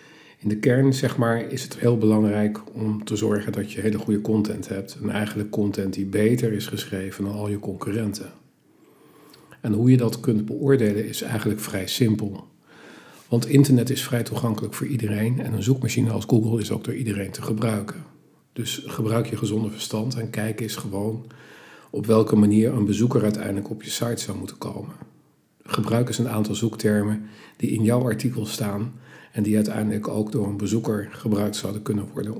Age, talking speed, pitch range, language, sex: 50-69, 185 wpm, 105-115 Hz, Dutch, male